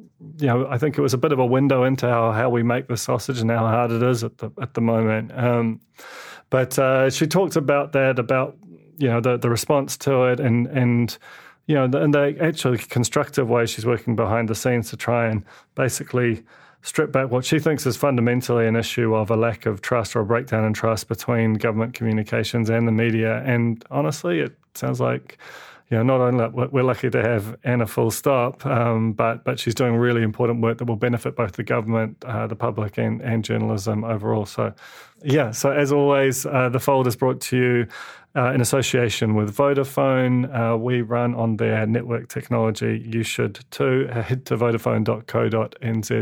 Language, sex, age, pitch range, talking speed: English, male, 30-49, 115-130 Hz, 200 wpm